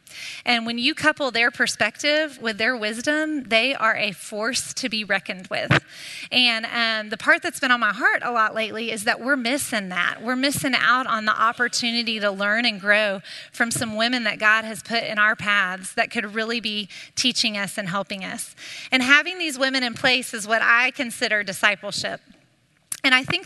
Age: 30-49